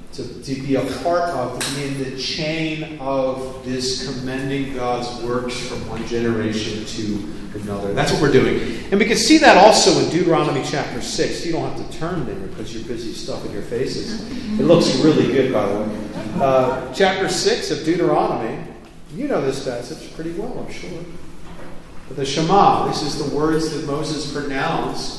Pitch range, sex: 120-155 Hz, male